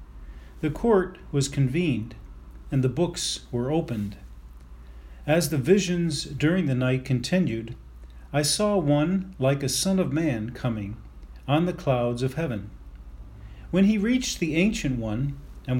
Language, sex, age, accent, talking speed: English, male, 40-59, American, 140 wpm